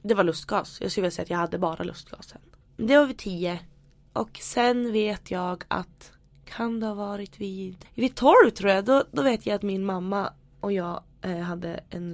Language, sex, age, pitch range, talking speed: English, female, 20-39, 175-235 Hz, 210 wpm